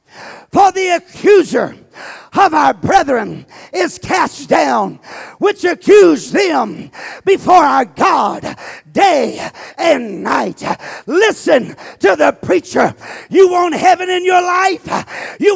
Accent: American